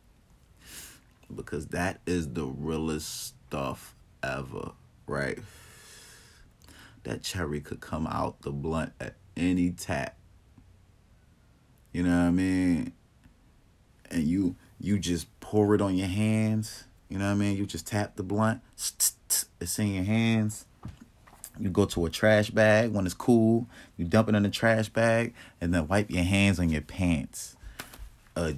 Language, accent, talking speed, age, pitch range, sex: English, American, 150 wpm, 30-49, 85-110 Hz, male